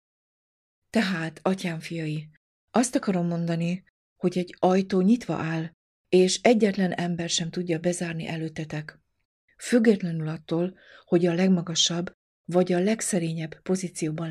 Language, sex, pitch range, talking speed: Hungarian, female, 160-185 Hz, 115 wpm